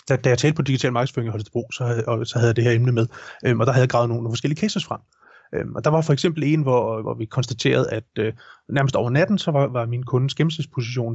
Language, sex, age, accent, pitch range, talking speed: Danish, male, 30-49, native, 120-150 Hz, 280 wpm